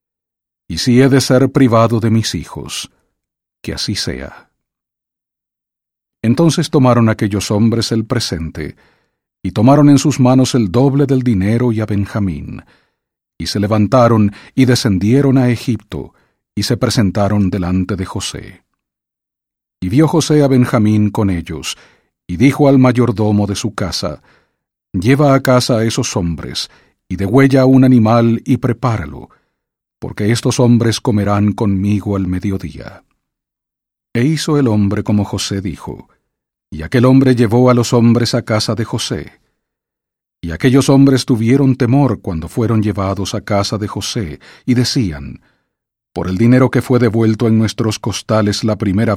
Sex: male